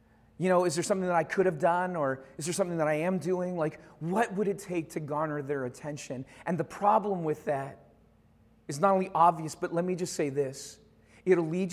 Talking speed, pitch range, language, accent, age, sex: 225 wpm, 140-185 Hz, English, American, 40-59, male